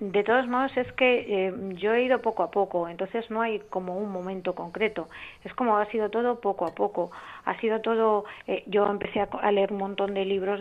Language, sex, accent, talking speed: Spanish, female, Spanish, 220 wpm